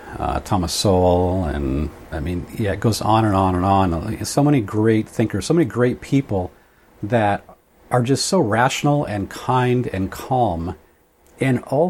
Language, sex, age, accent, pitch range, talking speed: English, male, 50-69, American, 90-120 Hz, 165 wpm